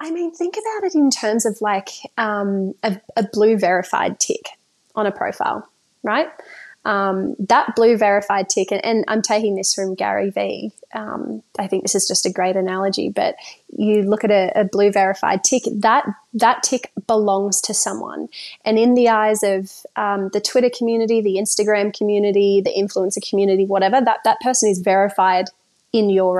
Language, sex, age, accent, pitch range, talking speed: English, female, 20-39, Australian, 195-225 Hz, 180 wpm